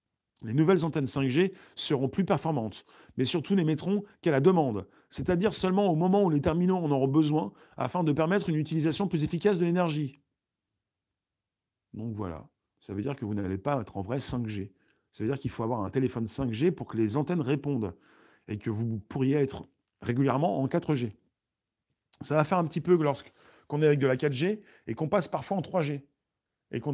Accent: French